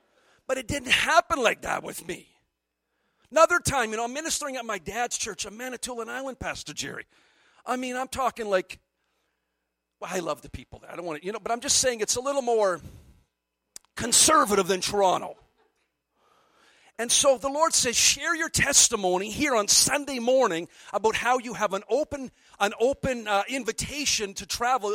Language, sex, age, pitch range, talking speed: English, male, 50-69, 185-260 Hz, 180 wpm